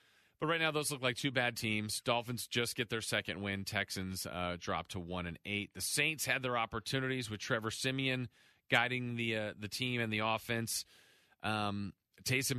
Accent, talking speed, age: American, 190 wpm, 40-59